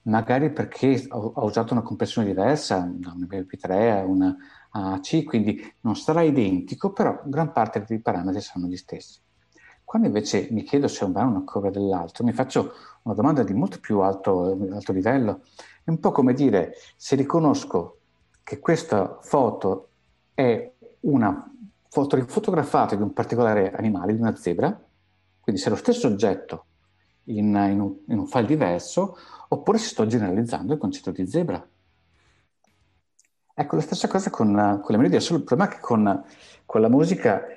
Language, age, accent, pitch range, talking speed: Italian, 50-69, native, 95-140 Hz, 170 wpm